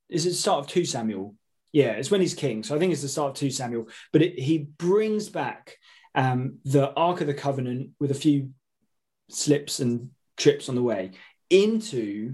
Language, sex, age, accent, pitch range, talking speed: English, male, 20-39, British, 125-160 Hz, 205 wpm